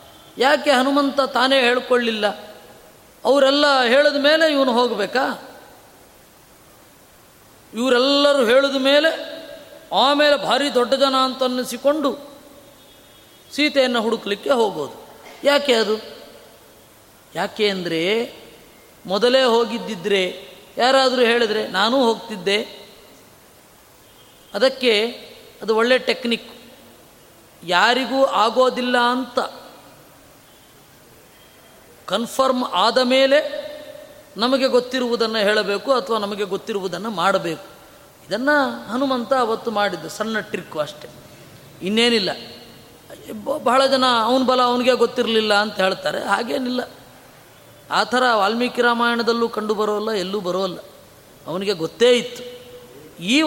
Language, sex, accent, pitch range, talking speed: Kannada, female, native, 210-270 Hz, 85 wpm